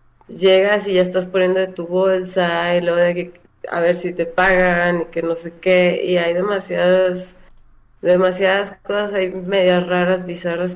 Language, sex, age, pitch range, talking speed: Spanish, female, 20-39, 175-195 Hz, 175 wpm